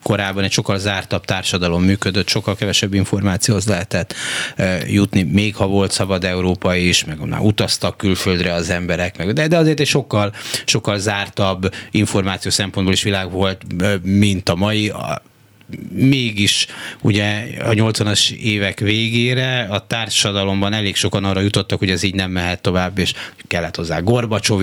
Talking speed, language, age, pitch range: 145 wpm, Hungarian, 30-49, 95-115 Hz